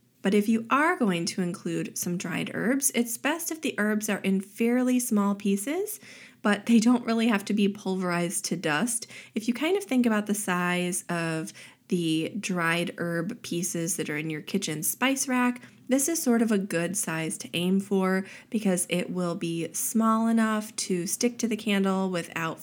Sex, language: female, English